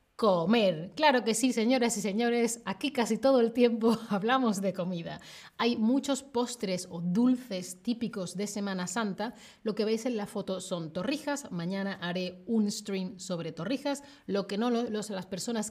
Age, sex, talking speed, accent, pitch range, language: 30-49, female, 170 wpm, Spanish, 190-245 Hz, Spanish